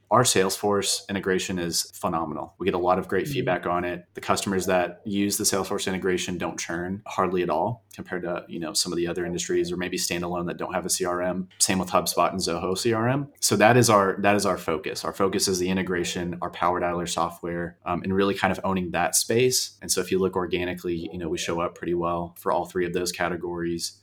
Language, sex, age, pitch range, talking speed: English, male, 30-49, 90-95 Hz, 230 wpm